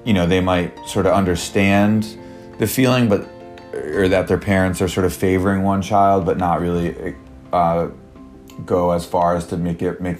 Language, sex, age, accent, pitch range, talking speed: English, male, 30-49, American, 85-95 Hz, 190 wpm